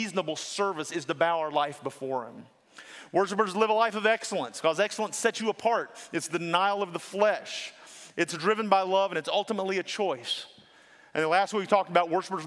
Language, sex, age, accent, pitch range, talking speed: English, male, 40-59, American, 160-220 Hz, 205 wpm